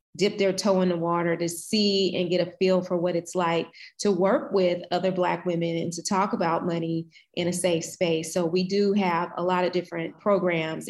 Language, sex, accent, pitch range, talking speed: English, female, American, 170-190 Hz, 220 wpm